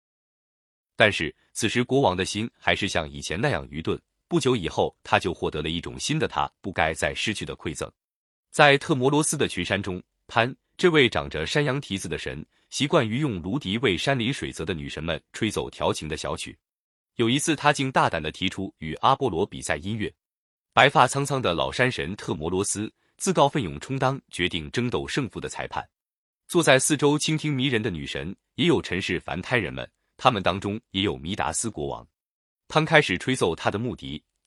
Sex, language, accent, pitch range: male, Chinese, native, 85-135 Hz